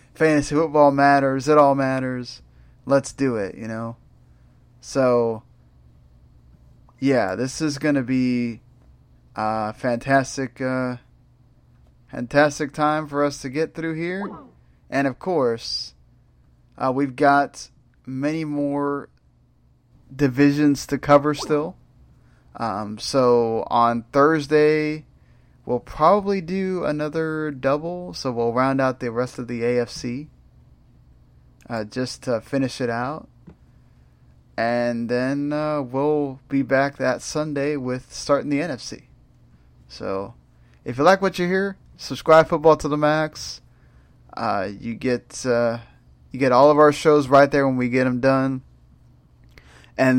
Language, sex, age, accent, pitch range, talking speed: English, male, 30-49, American, 120-145 Hz, 130 wpm